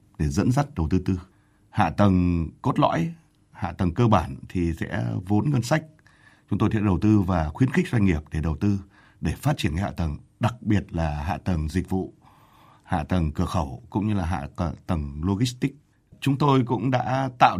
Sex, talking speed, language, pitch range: male, 200 wpm, Vietnamese, 90-120 Hz